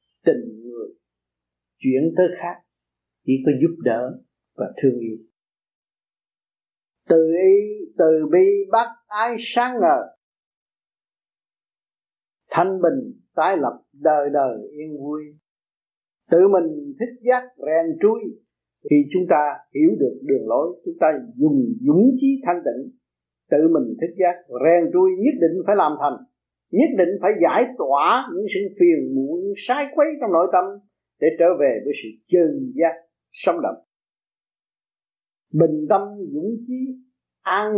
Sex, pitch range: male, 155-260 Hz